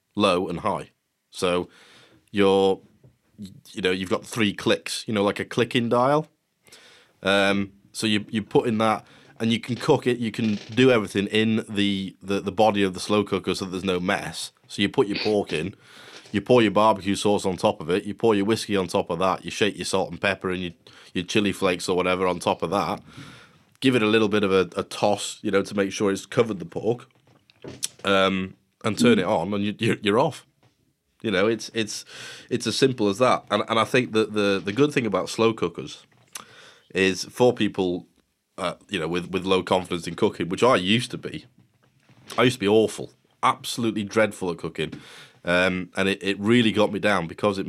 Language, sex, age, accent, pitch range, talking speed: English, male, 20-39, British, 95-110 Hz, 215 wpm